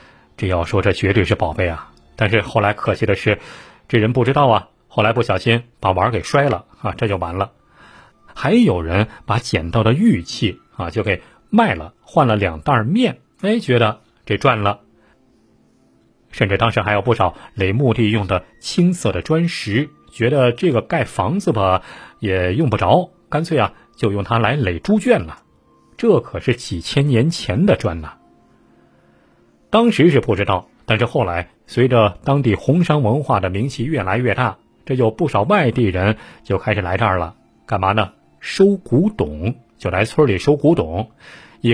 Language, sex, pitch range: Chinese, male, 100-130 Hz